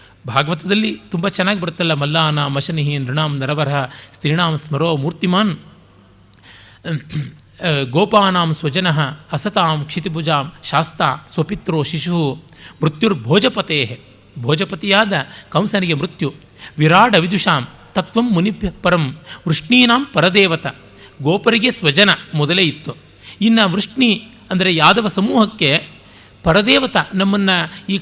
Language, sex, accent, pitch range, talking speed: Kannada, male, native, 130-200 Hz, 90 wpm